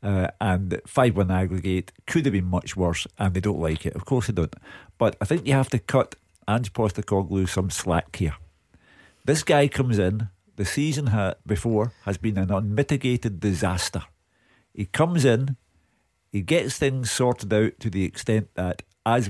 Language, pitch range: English, 95-120 Hz